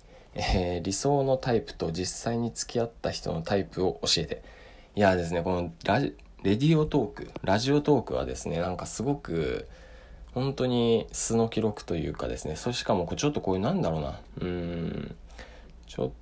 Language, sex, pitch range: Japanese, male, 80-135 Hz